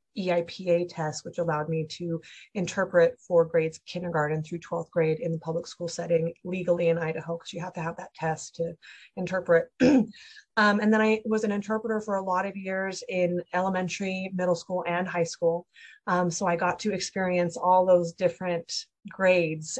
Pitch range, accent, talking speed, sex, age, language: 170-195 Hz, American, 180 wpm, female, 30-49, English